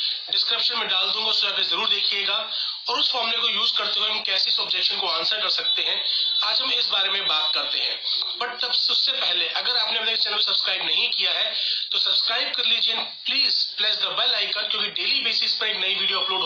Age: 30-49